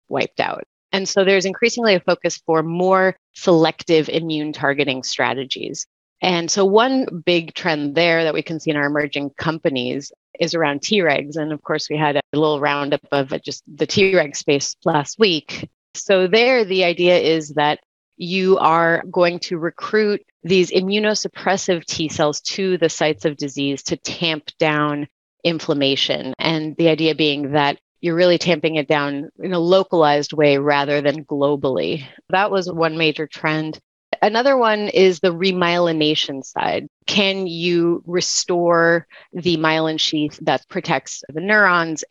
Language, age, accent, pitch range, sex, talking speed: English, 30-49, American, 150-185 Hz, female, 155 wpm